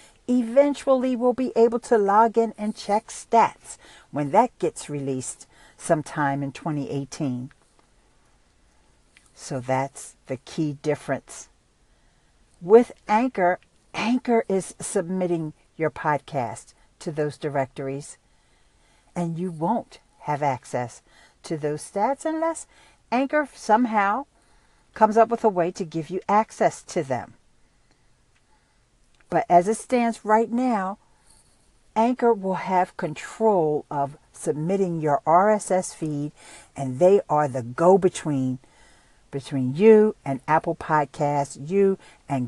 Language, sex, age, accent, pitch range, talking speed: English, female, 50-69, American, 150-230 Hz, 115 wpm